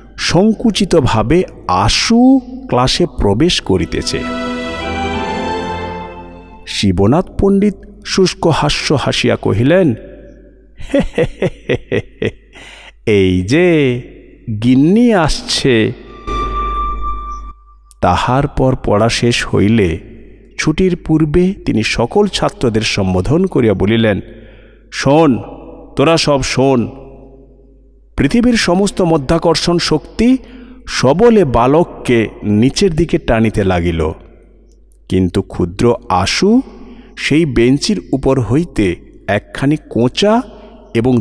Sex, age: male, 50-69